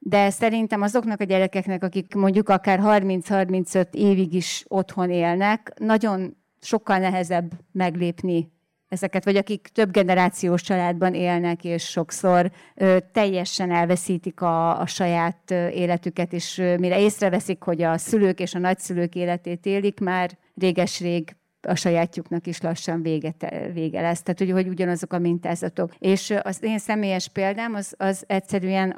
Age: 30-49